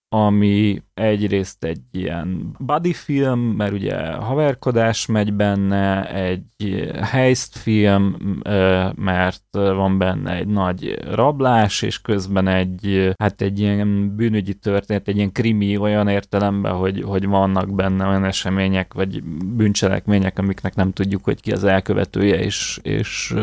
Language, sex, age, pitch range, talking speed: Hungarian, male, 30-49, 95-110 Hz, 125 wpm